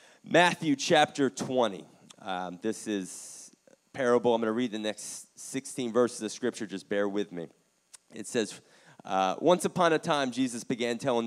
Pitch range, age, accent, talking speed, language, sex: 110-145 Hz, 30-49, American, 175 wpm, English, male